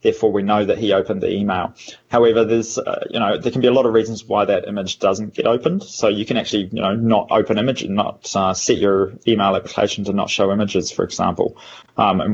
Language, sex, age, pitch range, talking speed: English, male, 20-39, 100-115 Hz, 245 wpm